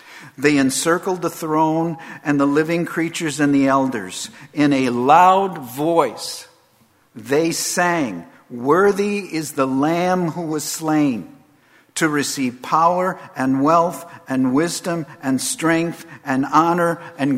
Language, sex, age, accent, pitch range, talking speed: English, male, 50-69, American, 125-165 Hz, 125 wpm